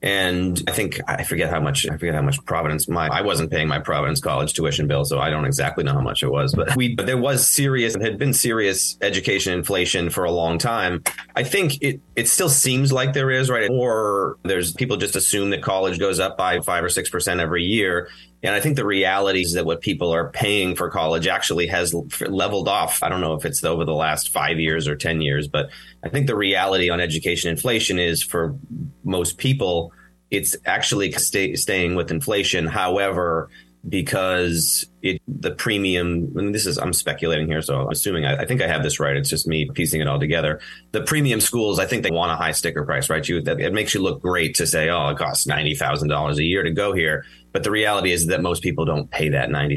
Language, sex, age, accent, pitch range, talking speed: English, male, 30-49, American, 80-110 Hz, 225 wpm